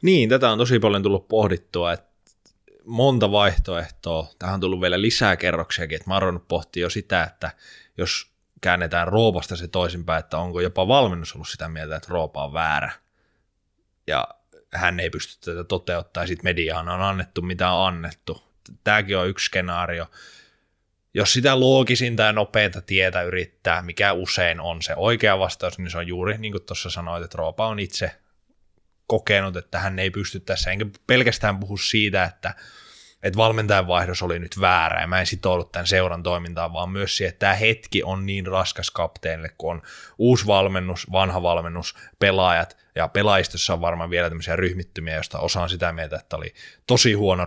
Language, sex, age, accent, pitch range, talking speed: Finnish, male, 20-39, native, 85-100 Hz, 175 wpm